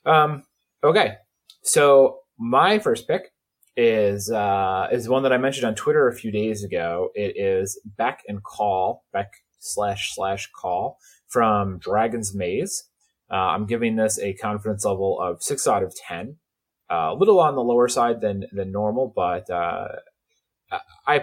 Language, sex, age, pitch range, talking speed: English, male, 30-49, 100-140 Hz, 160 wpm